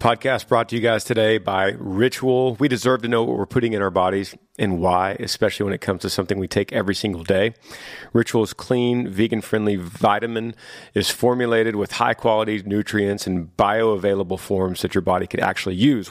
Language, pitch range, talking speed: English, 95-115 Hz, 185 wpm